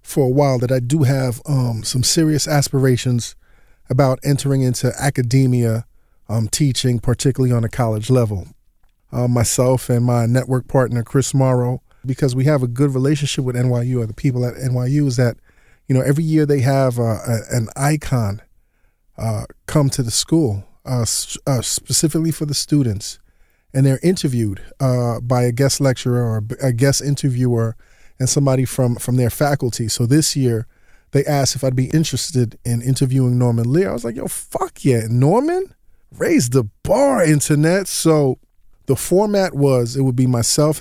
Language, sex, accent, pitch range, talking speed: English, male, American, 125-145 Hz, 170 wpm